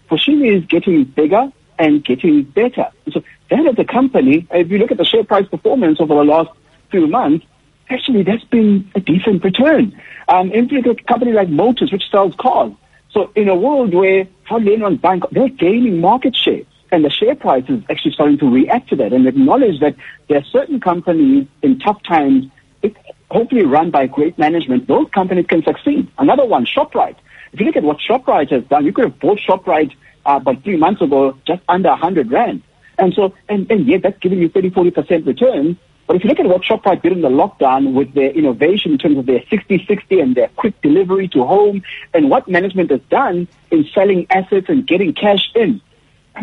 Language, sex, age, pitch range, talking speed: English, male, 60-79, 175-250 Hz, 200 wpm